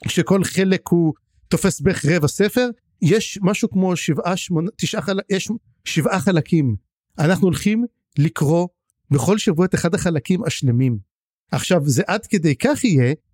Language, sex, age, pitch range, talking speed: Hebrew, male, 50-69, 150-200 Hz, 145 wpm